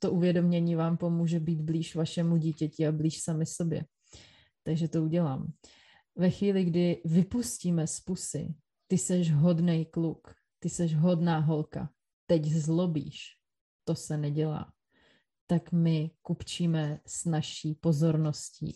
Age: 30-49